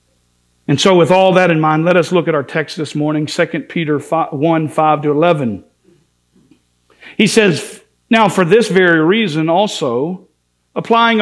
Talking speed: 155 wpm